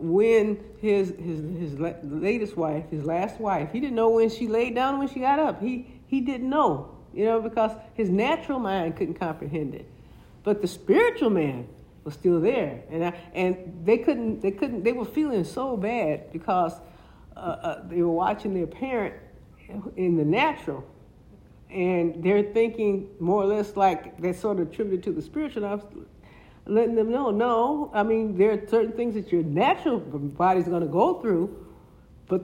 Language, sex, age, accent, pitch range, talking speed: English, female, 60-79, American, 175-230 Hz, 180 wpm